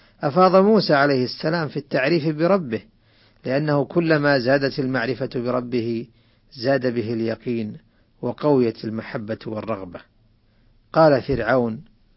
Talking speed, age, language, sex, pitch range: 100 wpm, 50-69, Arabic, male, 115-160 Hz